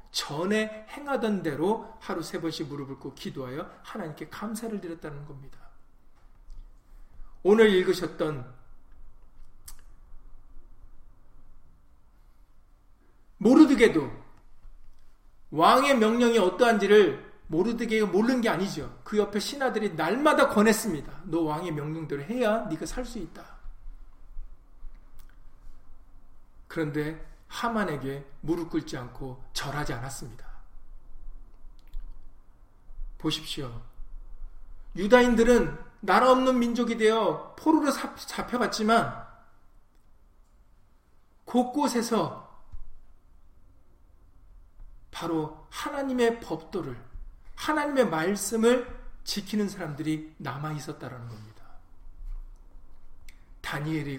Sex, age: male, 40-59